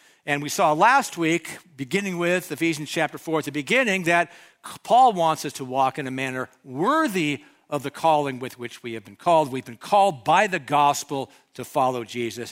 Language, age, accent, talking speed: English, 60-79, American, 195 wpm